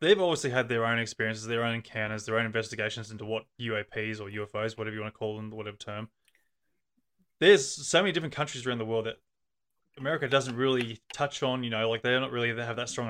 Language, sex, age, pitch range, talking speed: English, male, 20-39, 110-130 Hz, 220 wpm